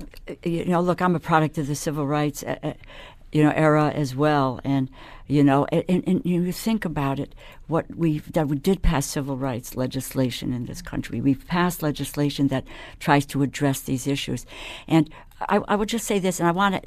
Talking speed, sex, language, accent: 200 wpm, female, English, American